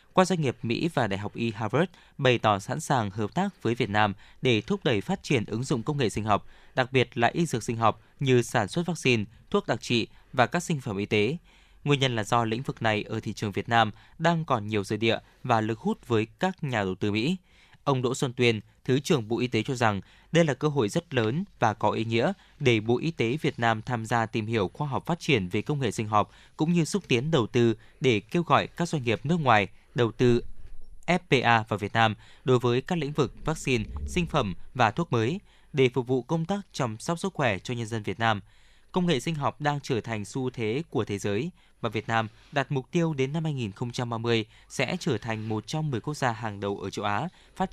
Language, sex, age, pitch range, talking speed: Vietnamese, male, 20-39, 110-150 Hz, 245 wpm